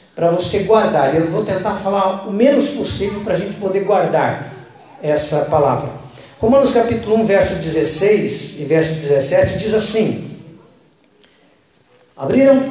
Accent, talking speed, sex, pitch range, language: Brazilian, 130 wpm, male, 170-240 Hz, Portuguese